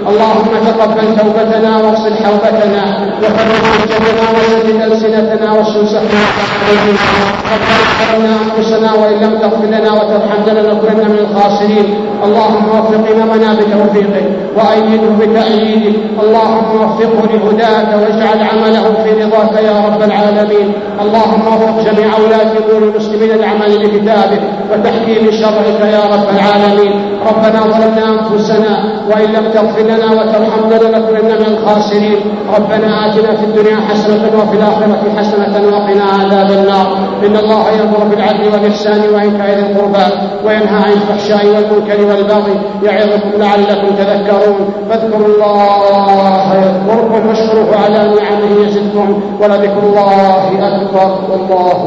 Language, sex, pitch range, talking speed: Arabic, male, 205-220 Hz, 115 wpm